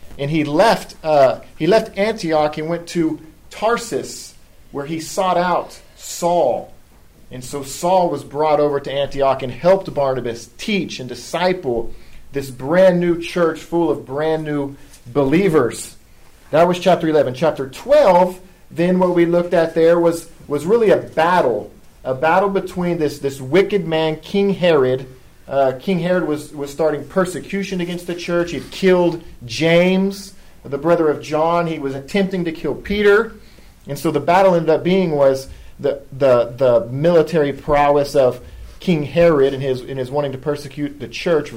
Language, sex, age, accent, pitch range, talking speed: English, male, 40-59, American, 135-175 Hz, 165 wpm